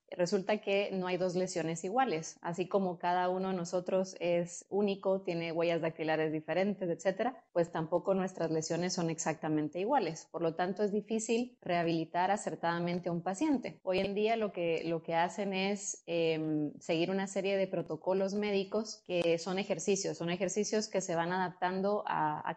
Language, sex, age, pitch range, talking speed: Spanish, female, 20-39, 170-195 Hz, 170 wpm